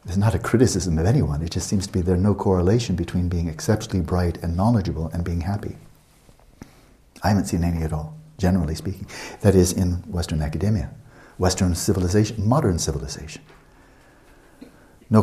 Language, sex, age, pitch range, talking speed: English, male, 60-79, 85-105 Hz, 160 wpm